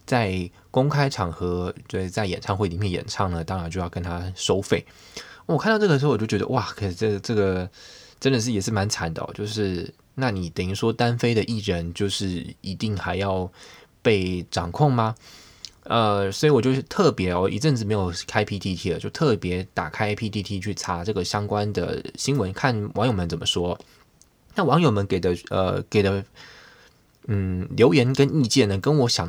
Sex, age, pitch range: male, 20-39, 90-115 Hz